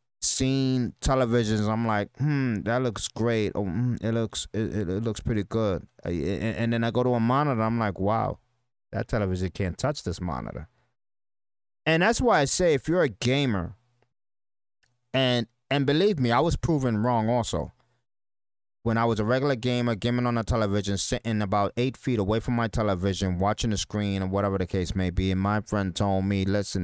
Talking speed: 185 wpm